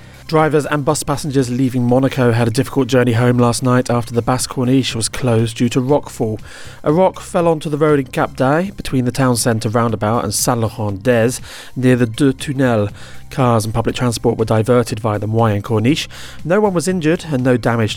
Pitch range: 115-150 Hz